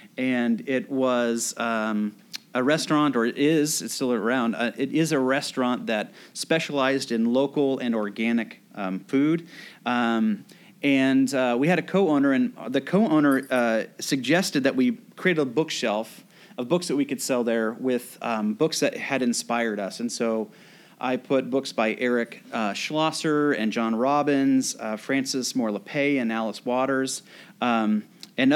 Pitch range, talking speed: 115-150 Hz, 160 wpm